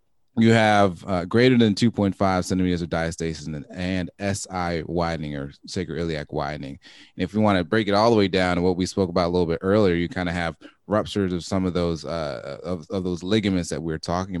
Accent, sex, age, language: American, male, 20-39, English